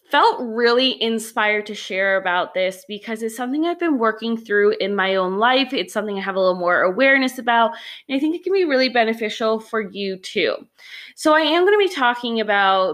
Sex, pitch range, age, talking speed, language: female, 210-290 Hz, 20-39, 215 wpm, English